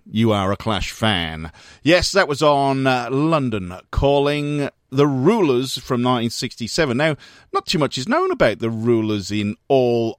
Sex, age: male, 40-59